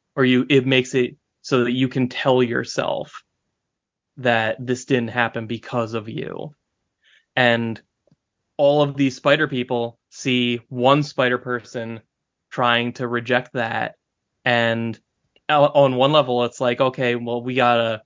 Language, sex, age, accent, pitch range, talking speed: English, male, 20-39, American, 120-145 Hz, 140 wpm